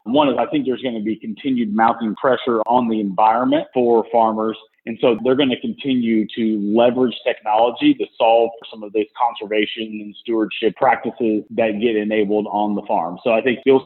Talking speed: 190 wpm